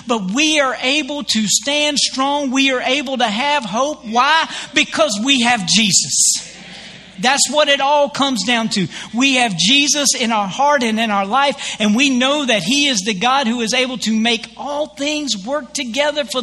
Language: English